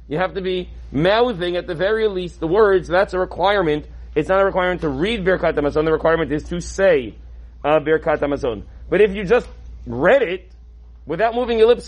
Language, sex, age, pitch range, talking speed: English, male, 30-49, 160-220 Hz, 190 wpm